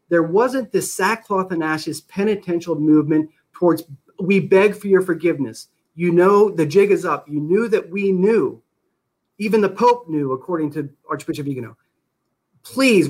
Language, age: English, 40-59